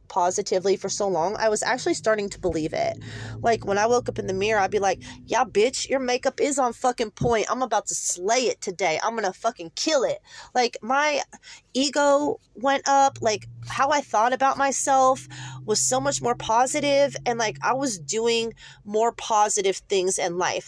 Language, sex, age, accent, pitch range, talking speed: English, female, 30-49, American, 195-265 Hz, 195 wpm